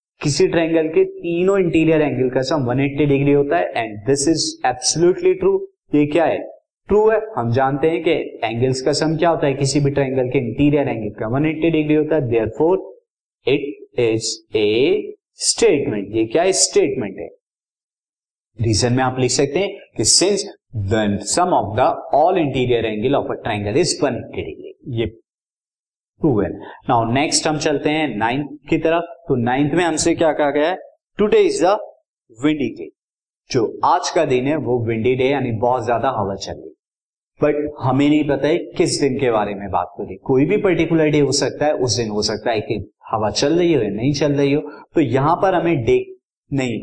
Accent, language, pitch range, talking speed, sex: native, Hindi, 130-185 Hz, 140 wpm, male